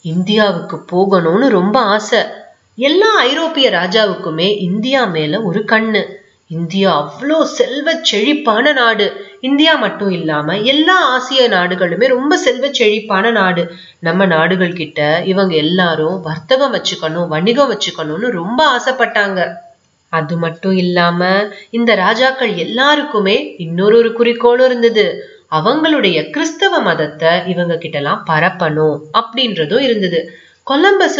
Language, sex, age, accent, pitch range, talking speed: Tamil, female, 30-49, native, 175-255 Hz, 105 wpm